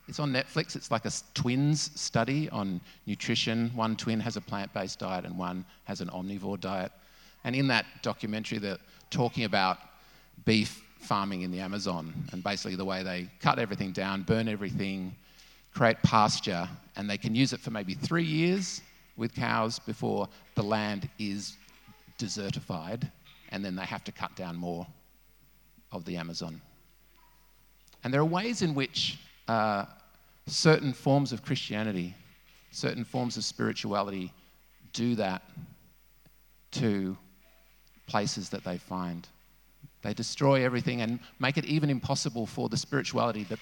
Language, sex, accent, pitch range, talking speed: English, male, Australian, 100-140 Hz, 145 wpm